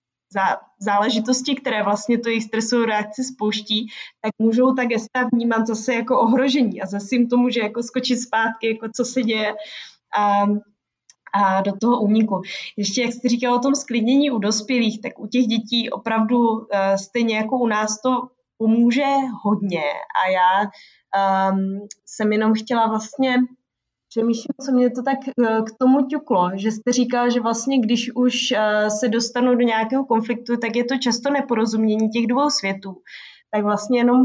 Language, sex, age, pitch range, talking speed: Czech, female, 20-39, 215-250 Hz, 160 wpm